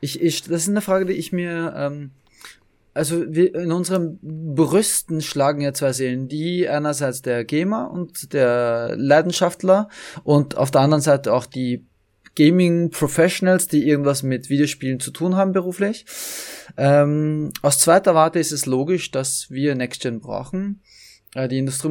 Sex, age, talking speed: male, 20-39, 150 wpm